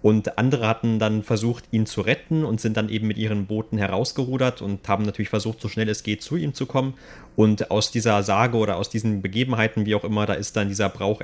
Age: 30-49